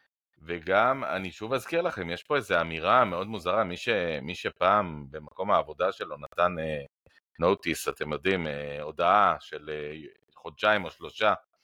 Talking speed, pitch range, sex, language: 155 wpm, 75-90 Hz, male, Hebrew